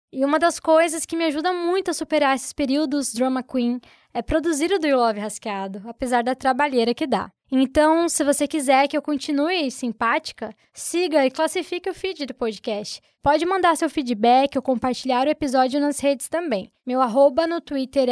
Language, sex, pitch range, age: Portuguese, female, 245-315 Hz, 10-29